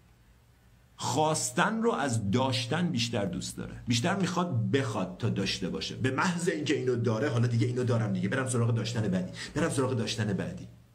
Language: Persian